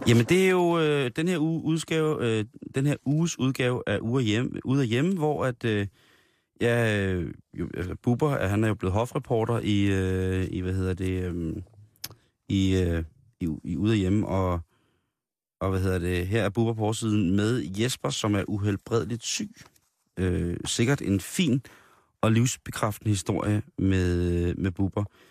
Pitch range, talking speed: 95-115 Hz, 165 wpm